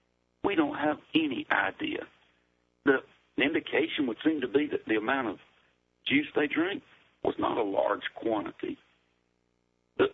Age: 50-69